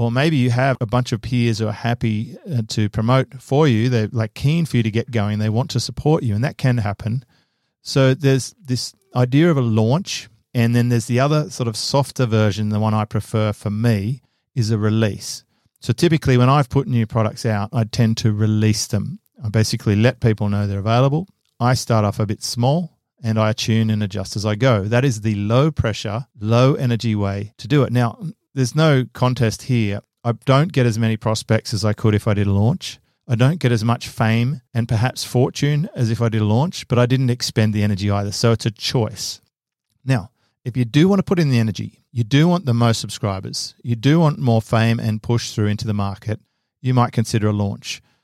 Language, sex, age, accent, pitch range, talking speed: English, male, 40-59, Australian, 110-130 Hz, 225 wpm